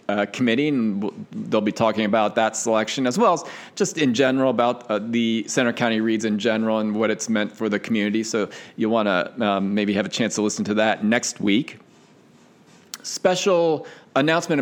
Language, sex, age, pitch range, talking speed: English, male, 40-59, 110-130 Hz, 190 wpm